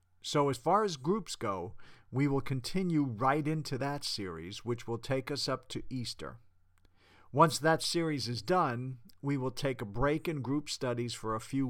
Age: 50-69